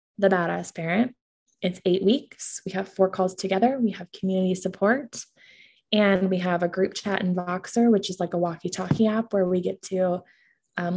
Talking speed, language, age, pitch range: 190 wpm, English, 20-39, 185-220 Hz